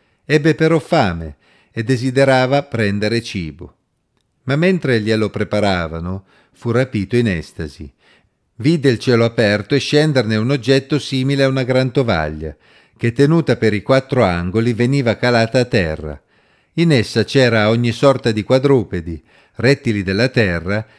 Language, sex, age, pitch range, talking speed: Italian, male, 50-69, 100-140 Hz, 135 wpm